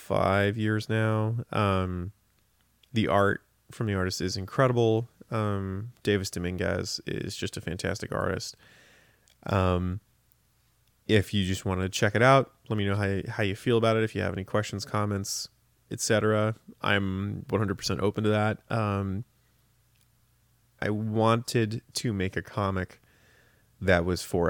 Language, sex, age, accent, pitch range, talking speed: English, male, 20-39, American, 95-115 Hz, 145 wpm